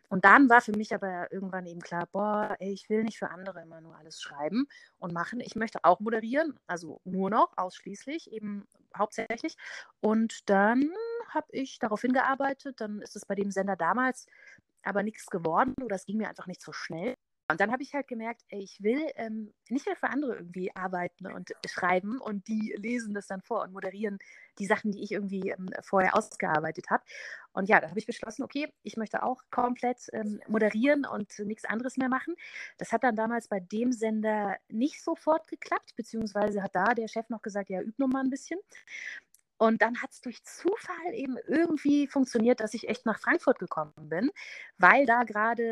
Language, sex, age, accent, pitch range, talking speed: German, female, 30-49, German, 195-260 Hz, 195 wpm